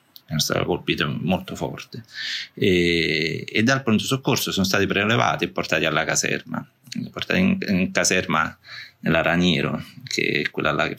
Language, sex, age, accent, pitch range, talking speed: Italian, male, 30-49, native, 80-110 Hz, 135 wpm